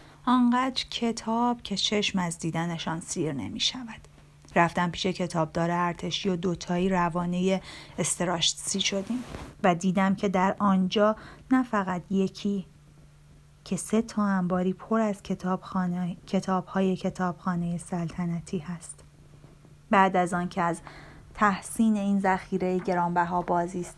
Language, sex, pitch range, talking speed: Persian, female, 170-190 Hz, 120 wpm